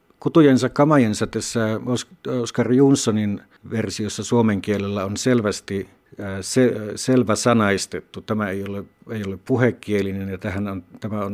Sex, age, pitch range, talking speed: male, 60-79, 95-115 Hz, 125 wpm